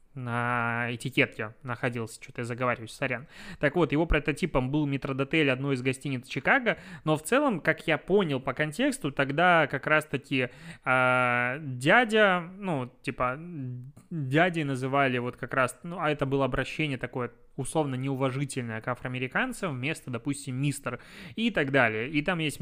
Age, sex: 20-39, male